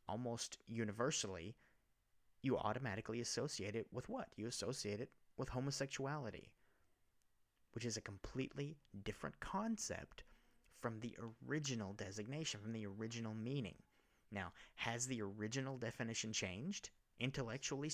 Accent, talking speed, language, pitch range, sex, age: American, 115 wpm, English, 105-140 Hz, male, 30-49